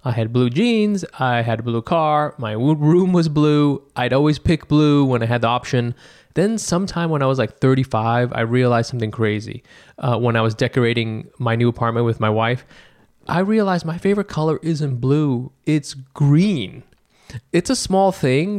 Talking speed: 185 wpm